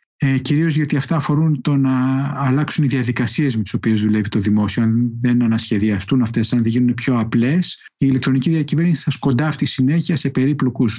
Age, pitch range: 50-69, 120-155 Hz